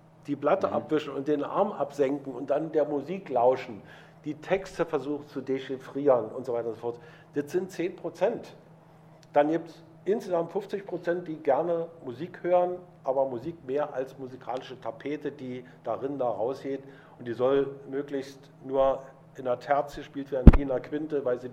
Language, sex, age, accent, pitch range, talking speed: German, male, 50-69, German, 130-160 Hz, 175 wpm